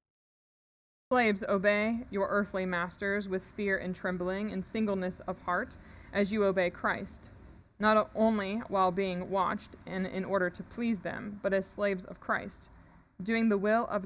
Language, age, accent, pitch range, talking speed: English, 20-39, American, 180-220 Hz, 160 wpm